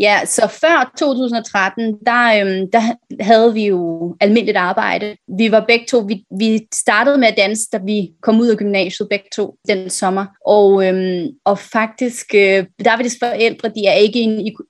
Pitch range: 195-230 Hz